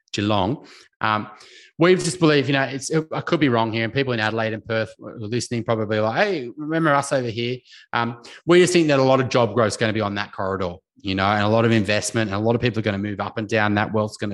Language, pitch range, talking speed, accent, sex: English, 100-135 Hz, 285 wpm, Australian, male